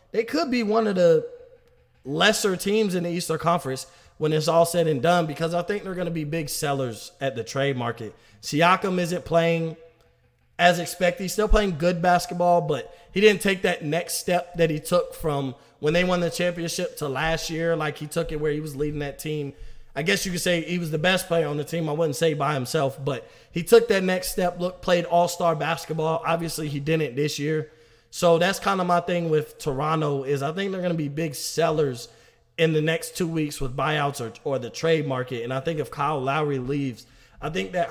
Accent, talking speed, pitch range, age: American, 225 wpm, 145-175 Hz, 20-39